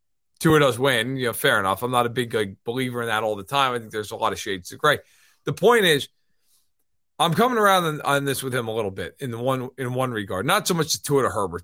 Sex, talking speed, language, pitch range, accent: male, 285 wpm, English, 125-180 Hz, American